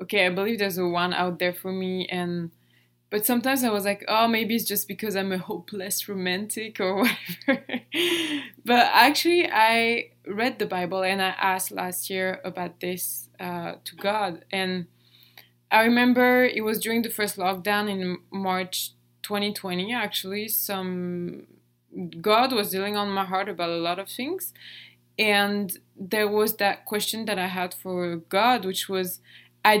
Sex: female